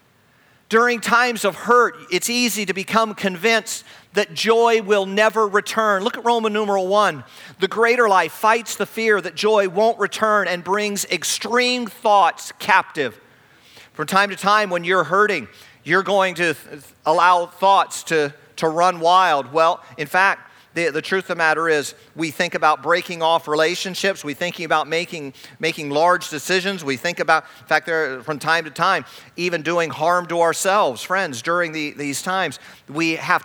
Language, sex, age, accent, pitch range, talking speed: English, male, 40-59, American, 165-195 Hz, 165 wpm